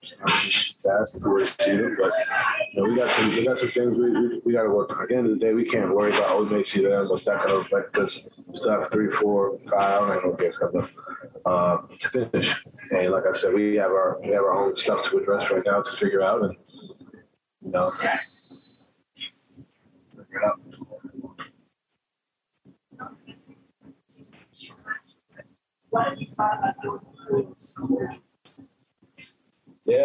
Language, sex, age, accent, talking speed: English, male, 30-49, American, 150 wpm